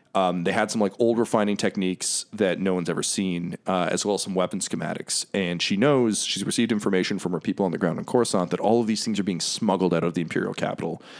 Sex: male